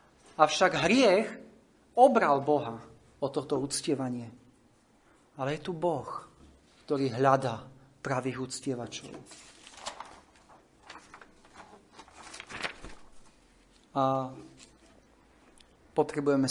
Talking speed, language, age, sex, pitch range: 60 wpm, Slovak, 40-59, male, 125-150 Hz